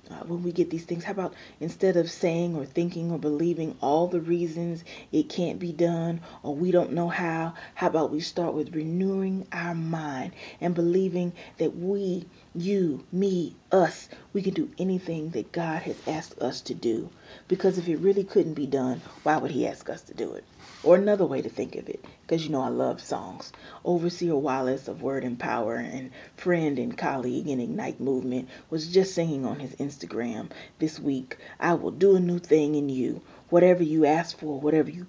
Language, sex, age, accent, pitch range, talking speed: English, female, 30-49, American, 155-180 Hz, 200 wpm